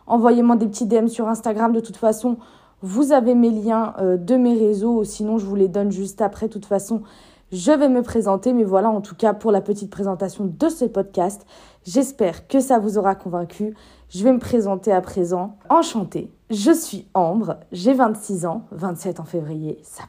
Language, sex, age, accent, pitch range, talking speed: French, female, 20-39, French, 190-230 Hz, 195 wpm